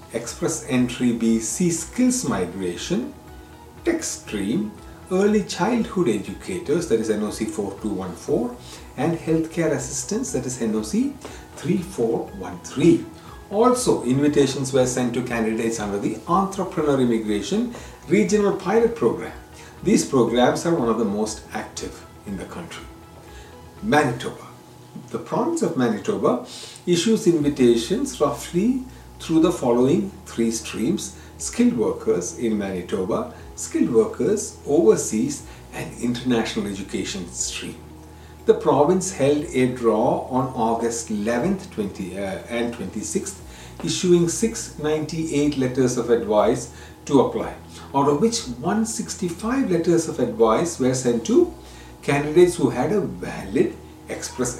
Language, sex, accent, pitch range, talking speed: English, male, Indian, 110-175 Hz, 115 wpm